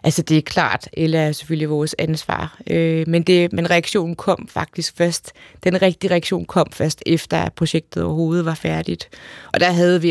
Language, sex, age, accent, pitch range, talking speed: Danish, female, 30-49, native, 165-190 Hz, 180 wpm